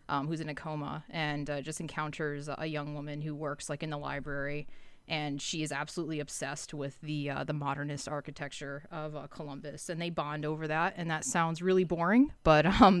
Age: 20-39